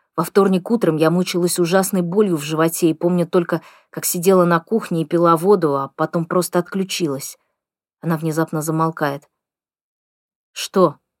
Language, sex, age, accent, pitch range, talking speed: Russian, female, 20-39, native, 160-200 Hz, 145 wpm